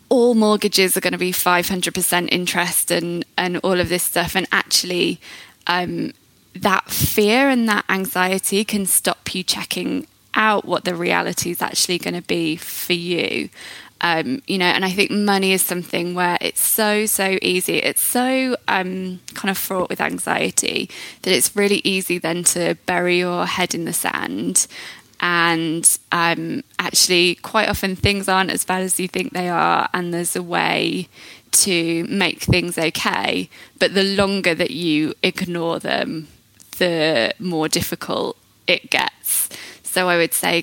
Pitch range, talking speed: 175-200 Hz, 160 wpm